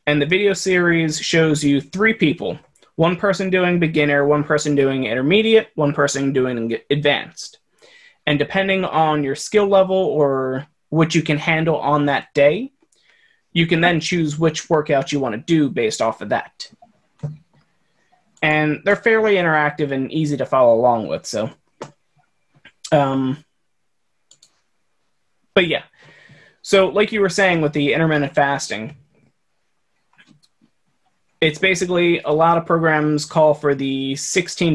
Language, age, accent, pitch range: English, 20-39, American, 145-175 Hz